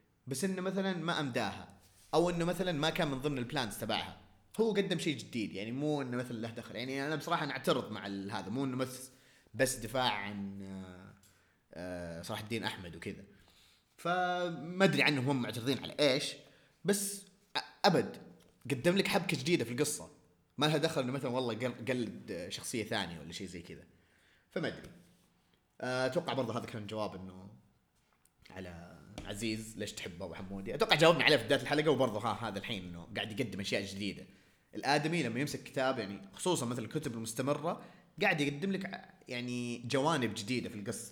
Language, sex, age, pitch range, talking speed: Arabic, male, 30-49, 100-155 Hz, 165 wpm